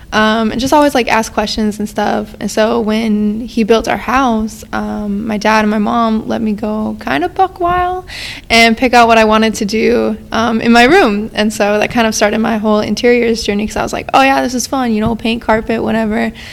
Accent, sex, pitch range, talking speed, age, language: American, female, 215-240 Hz, 235 wpm, 20-39, English